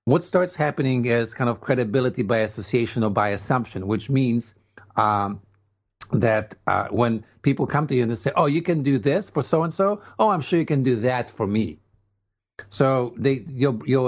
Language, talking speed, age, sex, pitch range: English, 190 wpm, 50-69, male, 105-130 Hz